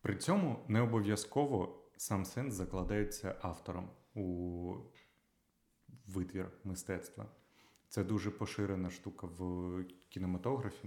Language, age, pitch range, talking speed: Ukrainian, 30-49, 90-105 Hz, 95 wpm